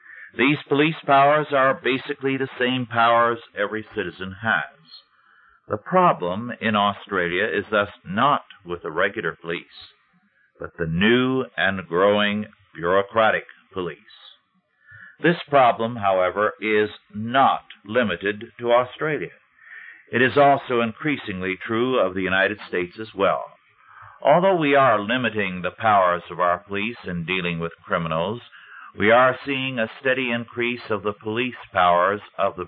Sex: male